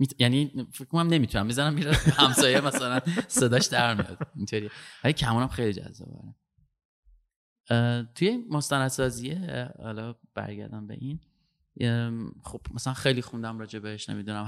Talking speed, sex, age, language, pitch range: 110 wpm, male, 30-49, Persian, 115-155 Hz